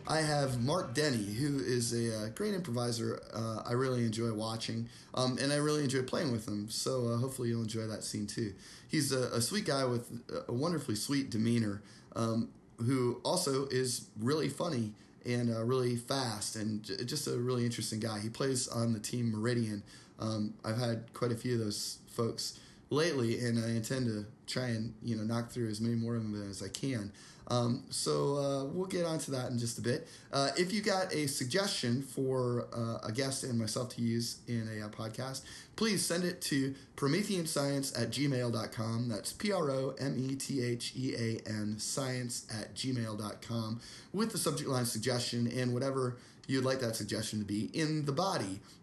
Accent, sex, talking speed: American, male, 185 wpm